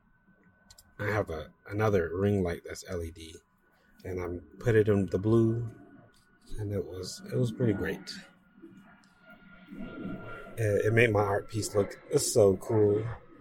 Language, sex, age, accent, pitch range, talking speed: English, male, 30-49, American, 95-120 Hz, 140 wpm